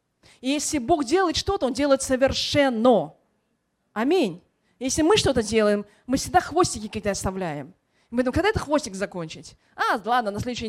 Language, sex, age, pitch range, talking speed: Russian, female, 20-39, 215-320 Hz, 150 wpm